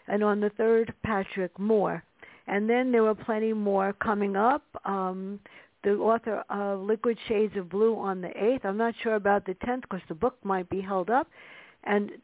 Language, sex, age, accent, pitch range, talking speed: English, female, 60-79, American, 195-225 Hz, 190 wpm